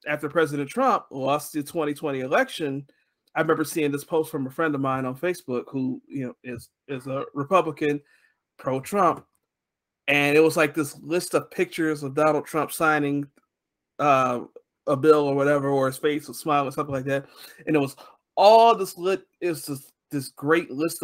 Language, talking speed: English, 185 wpm